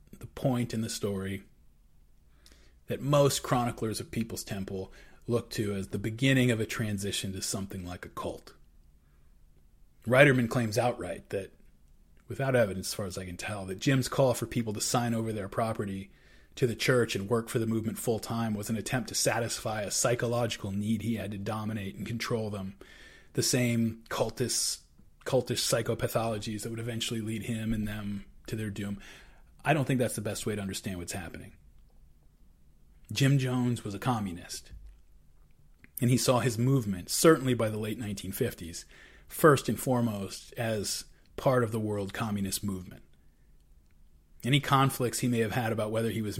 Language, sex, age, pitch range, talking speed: English, male, 30-49, 95-120 Hz, 170 wpm